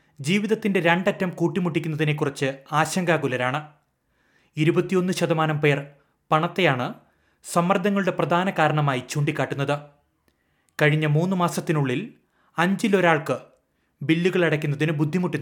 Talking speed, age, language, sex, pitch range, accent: 70 wpm, 30-49, Malayalam, male, 145-175 Hz, native